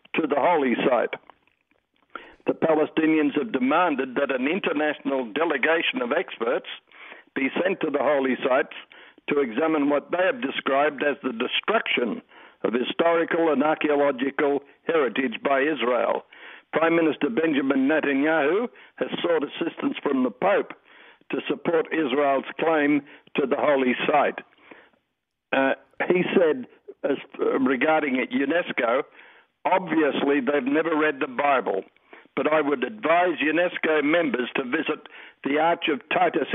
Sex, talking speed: male, 130 wpm